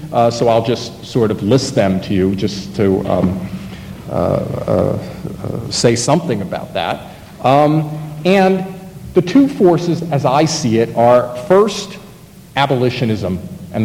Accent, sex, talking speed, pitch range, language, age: American, male, 145 wpm, 110-155 Hz, English, 50-69